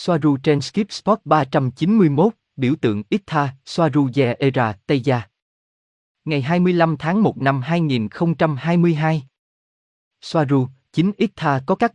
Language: Vietnamese